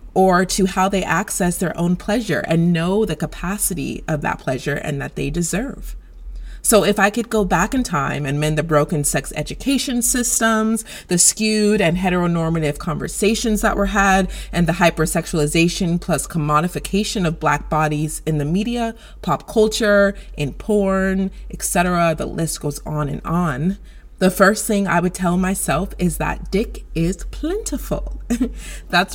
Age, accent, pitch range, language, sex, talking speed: 30-49, American, 160-215 Hz, English, female, 160 wpm